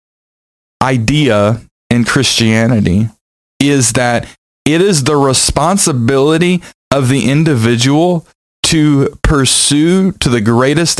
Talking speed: 95 wpm